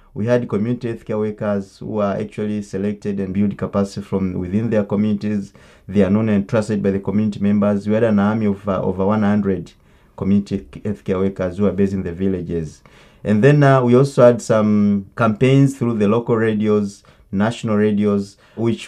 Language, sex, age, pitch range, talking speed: English, male, 30-49, 100-120 Hz, 190 wpm